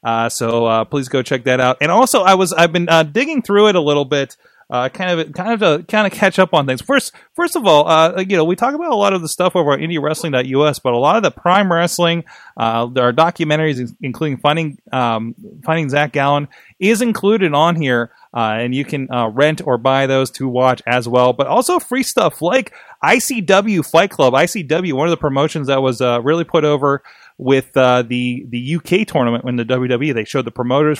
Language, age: English, 30-49